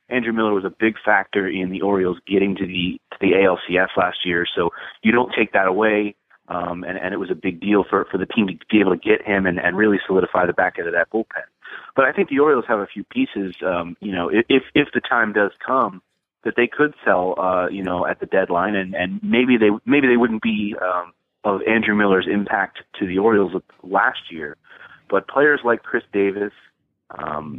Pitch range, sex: 95-115 Hz, male